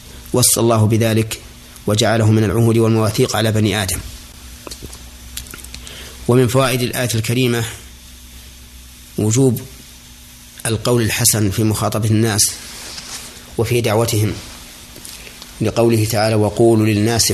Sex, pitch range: male, 75-115 Hz